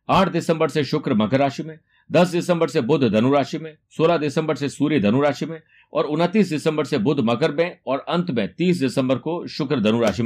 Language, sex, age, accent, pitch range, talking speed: Hindi, male, 60-79, native, 120-160 Hz, 215 wpm